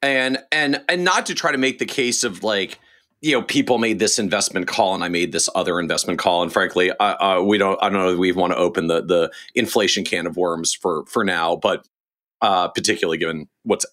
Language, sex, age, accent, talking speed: English, male, 40-59, American, 235 wpm